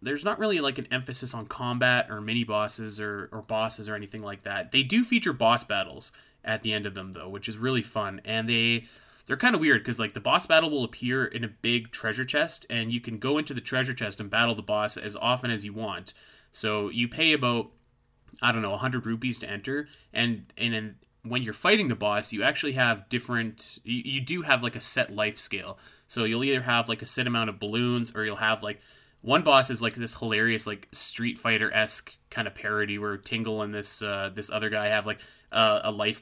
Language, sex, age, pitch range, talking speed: English, male, 20-39, 105-125 Hz, 230 wpm